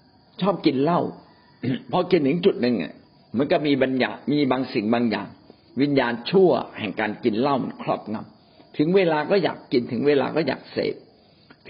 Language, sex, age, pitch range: Thai, male, 60-79, 125-175 Hz